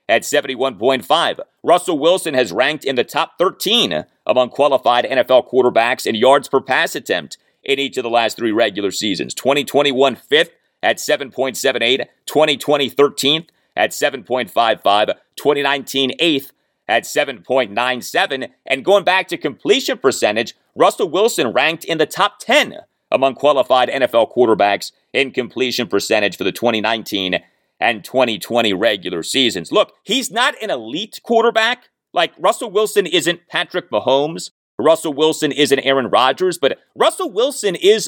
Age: 40-59